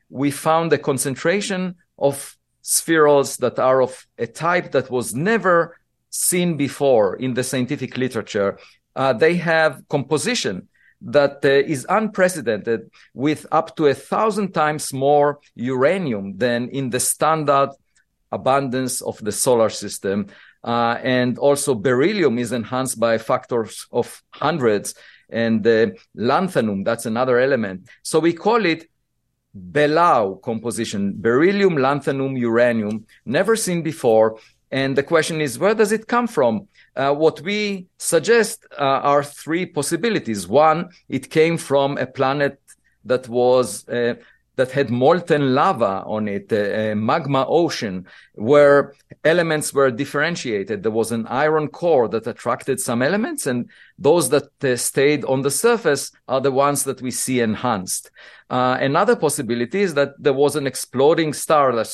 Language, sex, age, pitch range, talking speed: English, male, 50-69, 120-155 Hz, 140 wpm